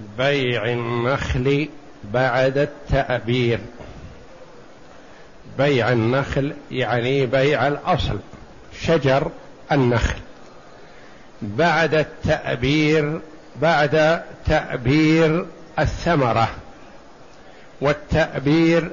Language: Arabic